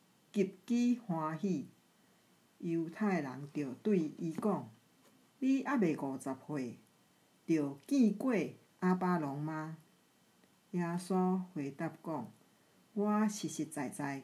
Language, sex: Chinese, female